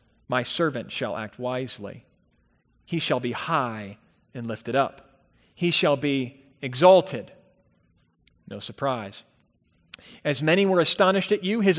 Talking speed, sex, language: 125 wpm, male, English